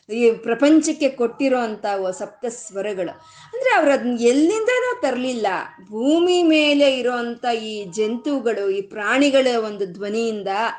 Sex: female